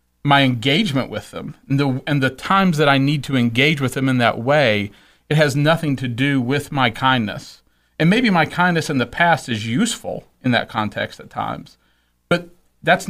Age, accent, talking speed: 40-59, American, 195 wpm